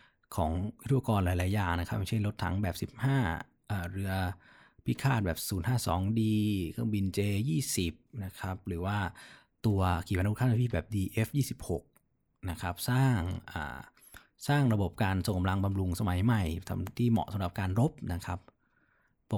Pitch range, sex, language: 90-115 Hz, male, Thai